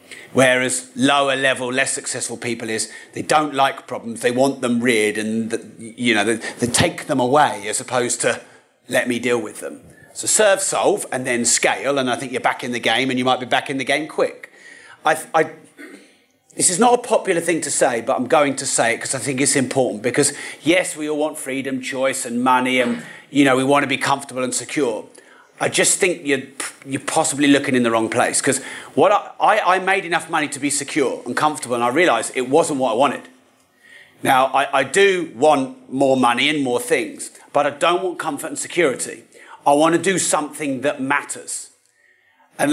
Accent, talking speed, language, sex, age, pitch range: British, 210 wpm, English, male, 30-49, 125-150 Hz